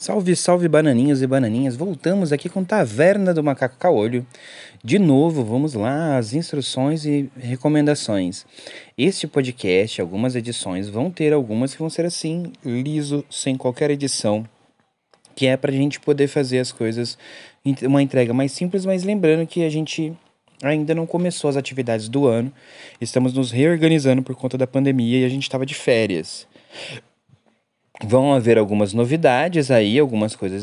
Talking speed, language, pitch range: 155 wpm, Portuguese, 120-160 Hz